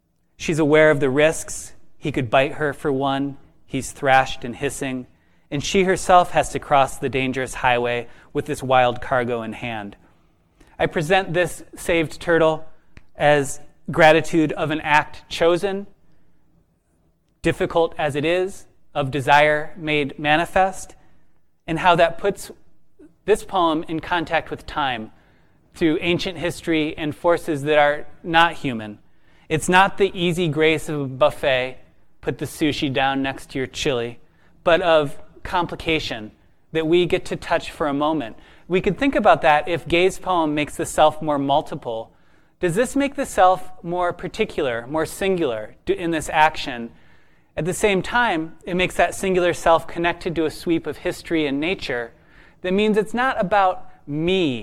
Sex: male